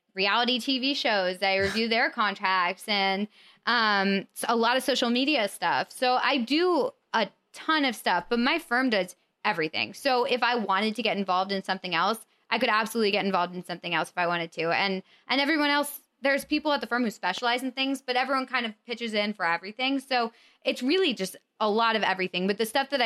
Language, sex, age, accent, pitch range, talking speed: English, female, 20-39, American, 190-245 Hz, 215 wpm